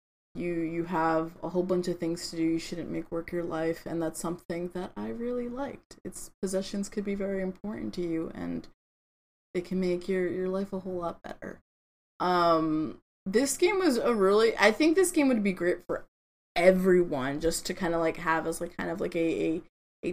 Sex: female